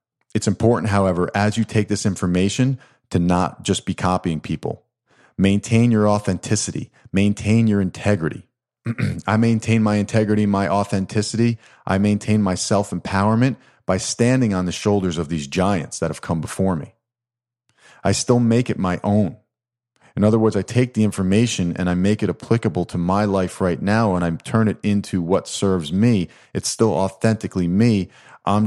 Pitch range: 85-110 Hz